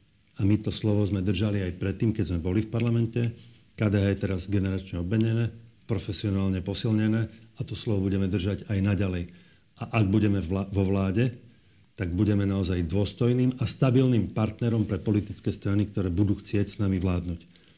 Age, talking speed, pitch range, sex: 40-59, 160 wpm, 95-110 Hz, male